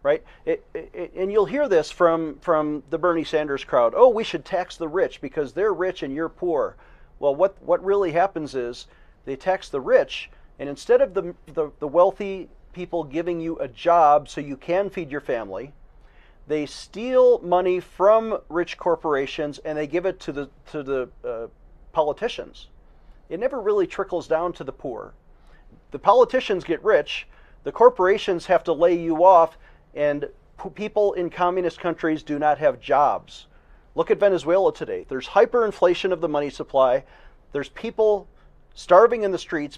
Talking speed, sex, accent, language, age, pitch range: 170 wpm, male, American, English, 40-59, 155-210 Hz